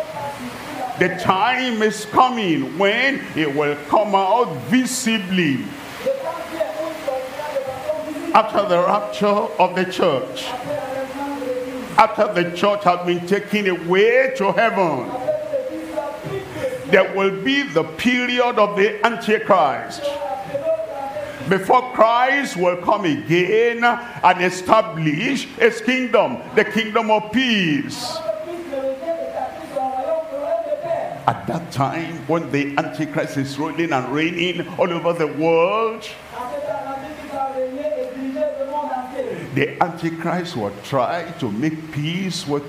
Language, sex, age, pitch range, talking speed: English, male, 50-69, 170-275 Hz, 95 wpm